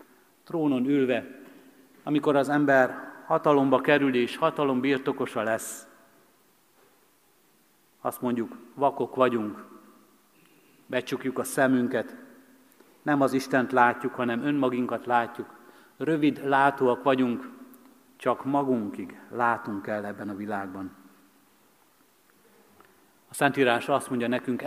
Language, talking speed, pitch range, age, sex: Hungarian, 95 wpm, 120-140 Hz, 50-69, male